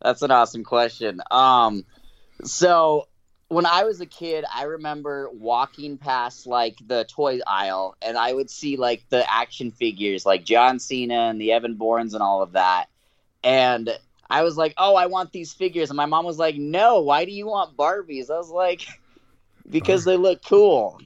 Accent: American